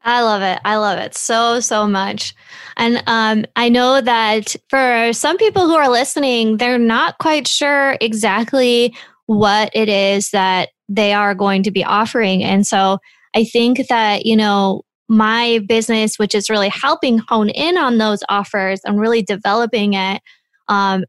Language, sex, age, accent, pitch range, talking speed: English, female, 20-39, American, 205-240 Hz, 165 wpm